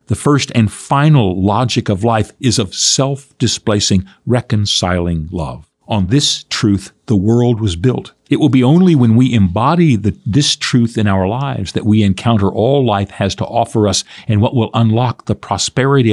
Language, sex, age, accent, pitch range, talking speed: English, male, 50-69, American, 100-135 Hz, 170 wpm